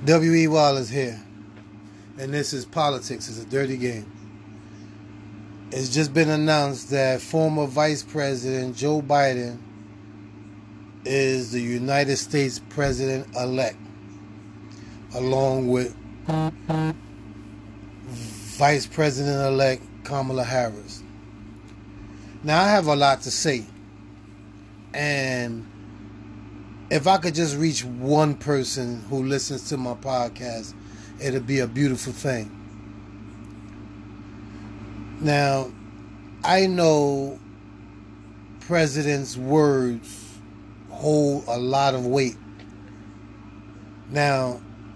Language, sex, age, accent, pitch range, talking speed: English, male, 30-49, American, 100-145 Hz, 95 wpm